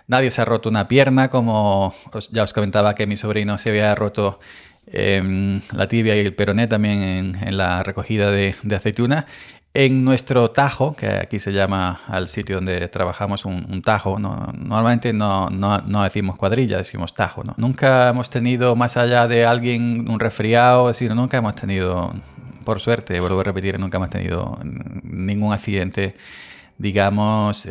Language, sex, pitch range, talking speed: Spanish, male, 100-125 Hz, 170 wpm